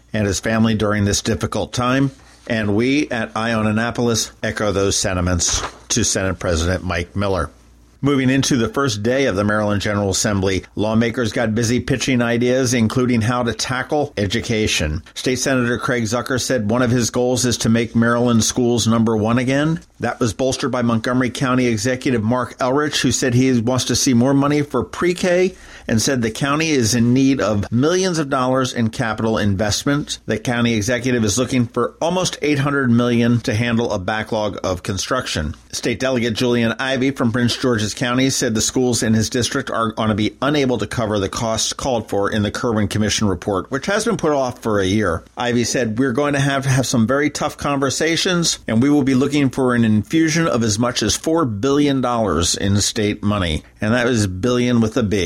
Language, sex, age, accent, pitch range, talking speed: English, male, 50-69, American, 110-130 Hz, 195 wpm